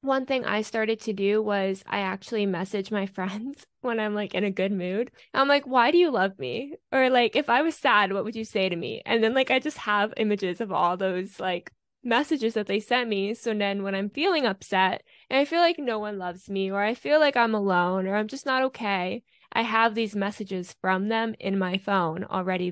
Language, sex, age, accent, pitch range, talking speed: English, female, 10-29, American, 195-240 Hz, 235 wpm